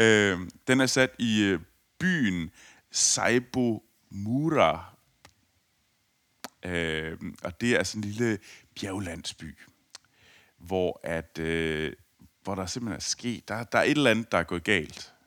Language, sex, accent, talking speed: Danish, male, native, 135 wpm